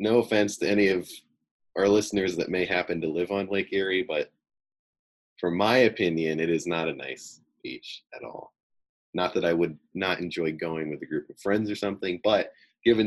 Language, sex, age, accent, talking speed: English, male, 20-39, American, 195 wpm